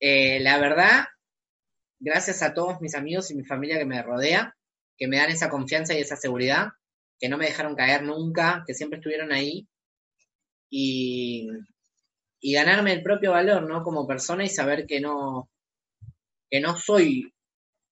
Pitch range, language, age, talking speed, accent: 130-165 Hz, Spanish, 20-39, 155 wpm, Argentinian